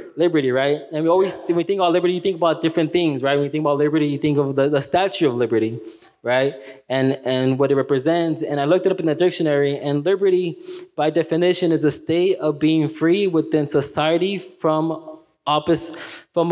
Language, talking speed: English, 210 wpm